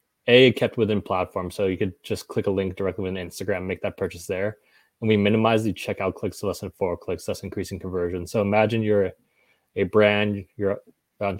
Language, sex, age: English, male, 20-39